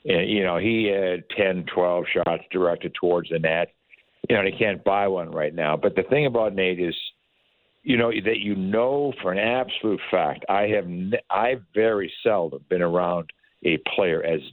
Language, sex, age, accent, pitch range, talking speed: English, male, 60-79, American, 85-110 Hz, 195 wpm